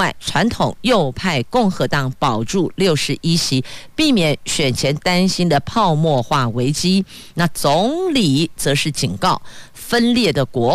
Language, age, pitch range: Chinese, 50-69, 135-185 Hz